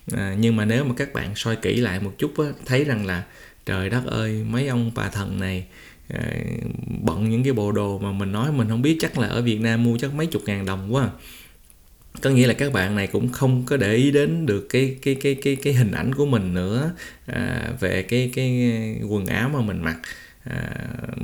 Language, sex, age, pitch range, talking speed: Vietnamese, male, 20-39, 105-130 Hz, 210 wpm